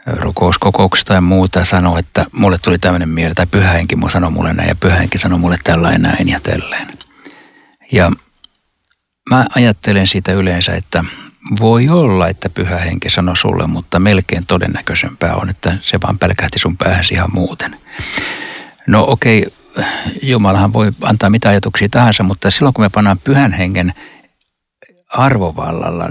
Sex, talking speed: male, 145 wpm